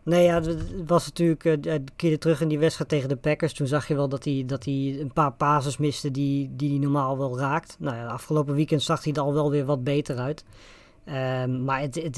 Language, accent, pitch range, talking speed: Dutch, Dutch, 135-155 Hz, 245 wpm